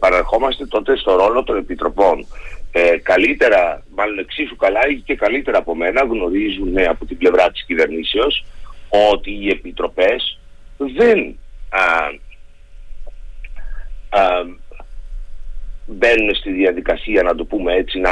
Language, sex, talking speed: Greek, male, 115 wpm